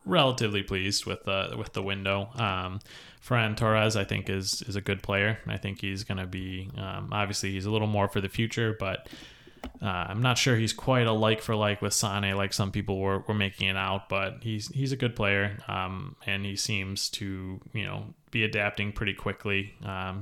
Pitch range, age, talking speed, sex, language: 95-110 Hz, 20-39, 210 wpm, male, English